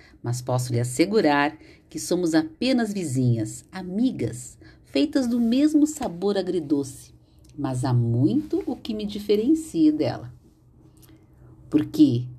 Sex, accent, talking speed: female, Brazilian, 110 wpm